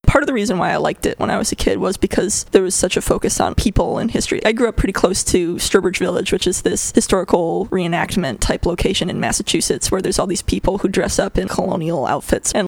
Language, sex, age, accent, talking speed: English, female, 20-39, American, 250 wpm